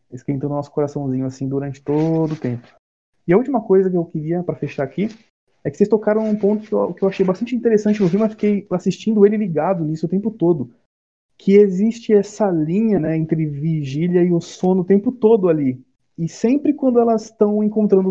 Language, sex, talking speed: Portuguese, male, 210 wpm